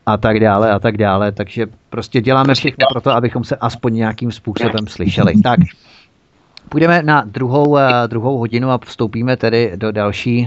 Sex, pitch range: male, 105-130 Hz